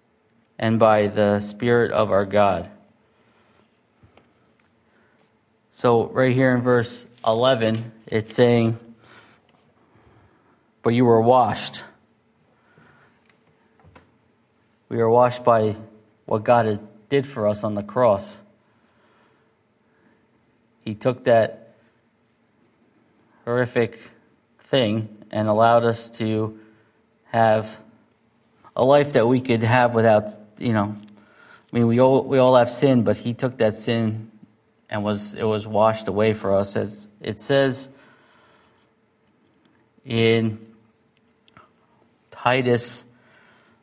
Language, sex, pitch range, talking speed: English, male, 110-125 Hz, 105 wpm